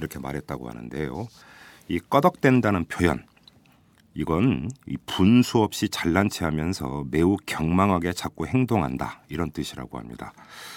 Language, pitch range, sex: Korean, 75-105 Hz, male